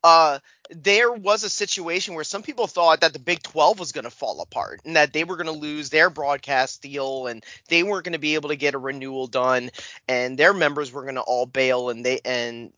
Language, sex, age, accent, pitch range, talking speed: English, male, 30-49, American, 140-185 Hz, 240 wpm